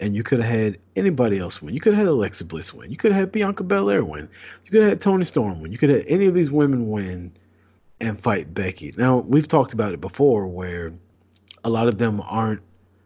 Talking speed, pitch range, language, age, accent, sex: 245 wpm, 90-120 Hz, English, 40-59, American, male